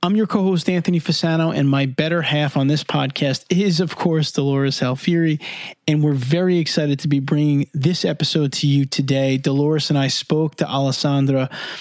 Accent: American